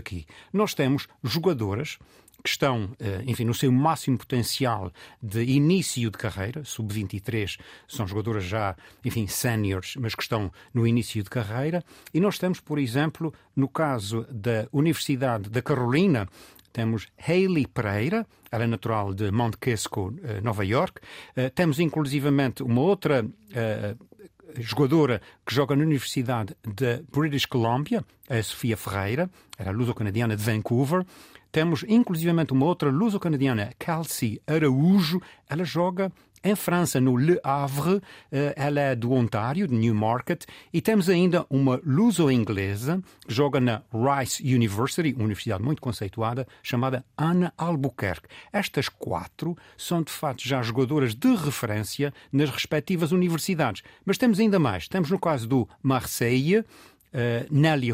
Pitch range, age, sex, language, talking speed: 110-160 Hz, 50-69, male, Portuguese, 130 wpm